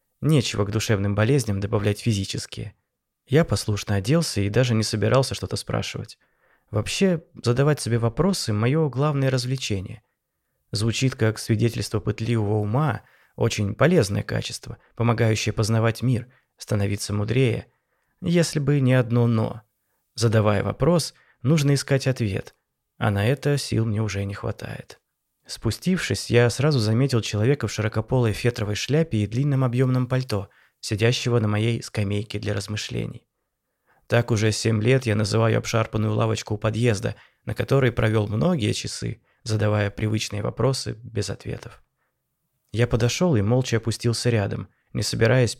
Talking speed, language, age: 130 wpm, Russian, 20-39